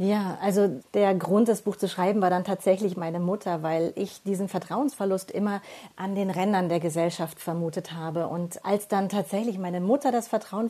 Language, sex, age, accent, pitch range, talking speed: German, female, 40-59, German, 175-200 Hz, 185 wpm